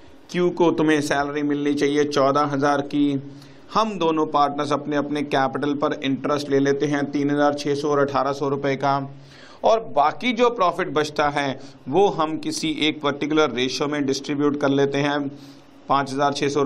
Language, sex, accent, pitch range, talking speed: Hindi, male, native, 140-190 Hz, 180 wpm